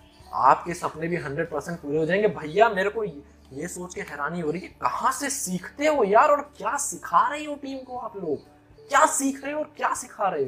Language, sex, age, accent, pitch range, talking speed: Hindi, male, 20-39, native, 150-235 Hz, 225 wpm